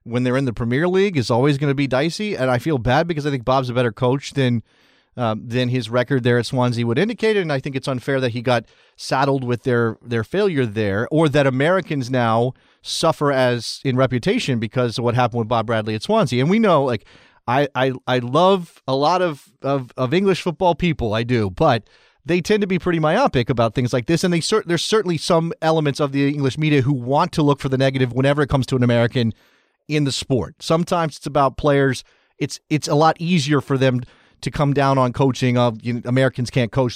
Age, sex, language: 30-49, male, English